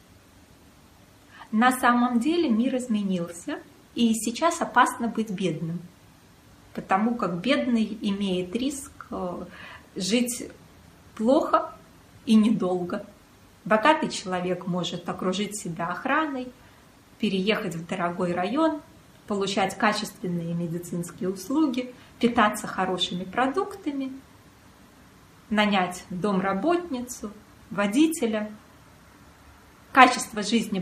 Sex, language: female, Russian